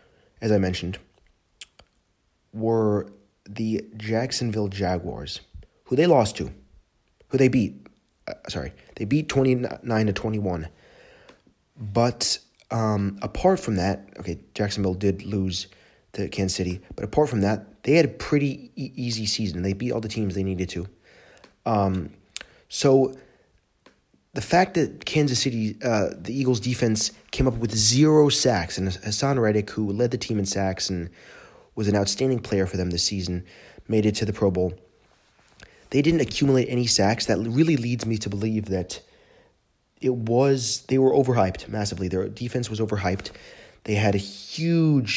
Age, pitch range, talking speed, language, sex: 30-49, 95-120 Hz, 155 wpm, English, male